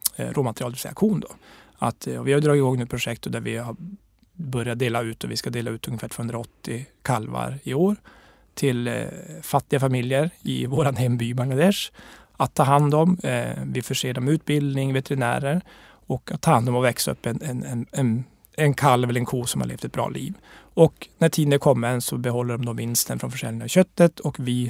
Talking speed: 205 wpm